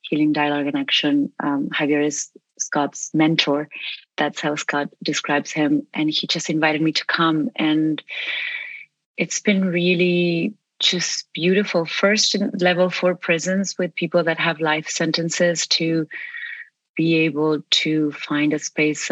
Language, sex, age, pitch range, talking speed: English, female, 30-49, 155-180 Hz, 140 wpm